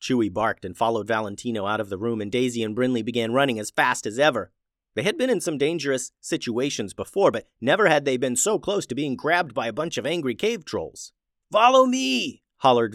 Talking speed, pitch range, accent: 220 wpm, 110-150 Hz, American